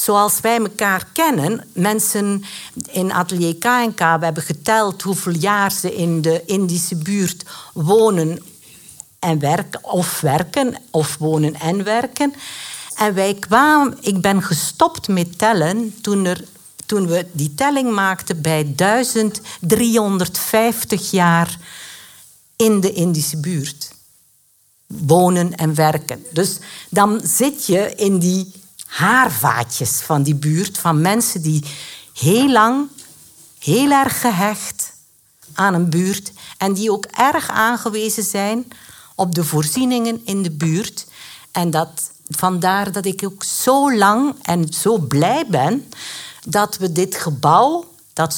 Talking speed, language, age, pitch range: 125 wpm, Dutch, 50-69, 165-215 Hz